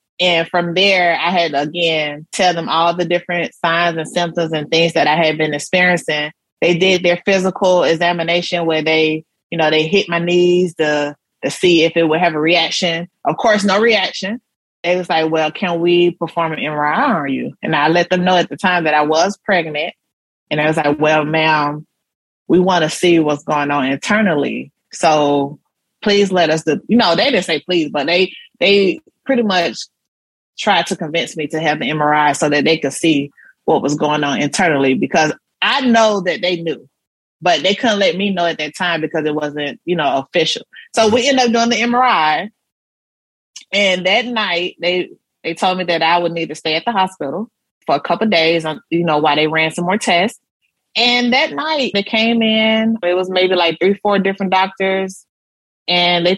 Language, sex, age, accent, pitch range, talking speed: English, female, 20-39, American, 155-190 Hz, 205 wpm